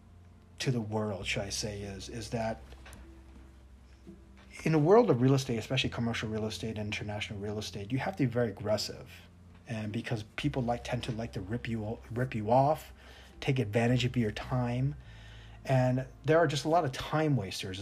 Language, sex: English, male